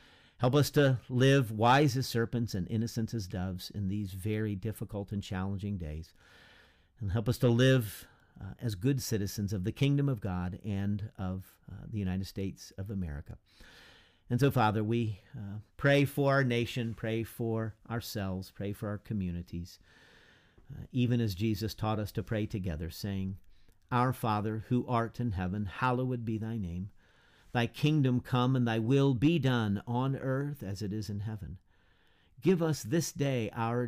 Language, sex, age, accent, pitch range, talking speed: English, male, 50-69, American, 95-125 Hz, 170 wpm